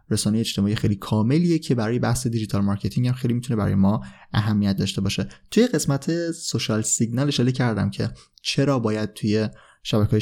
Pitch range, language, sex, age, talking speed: 110-135 Hz, Persian, male, 20-39, 160 wpm